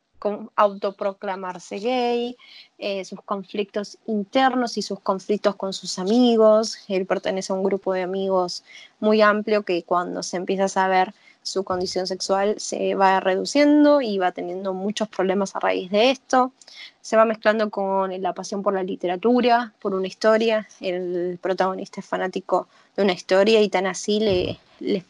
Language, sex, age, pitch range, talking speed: Spanish, female, 20-39, 190-235 Hz, 160 wpm